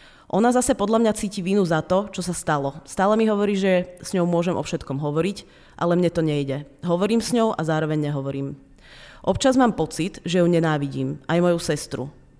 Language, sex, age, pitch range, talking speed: Czech, female, 30-49, 155-195 Hz, 195 wpm